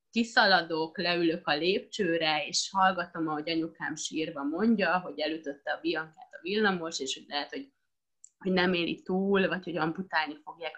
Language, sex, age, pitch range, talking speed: Hungarian, female, 20-39, 160-195 Hz, 155 wpm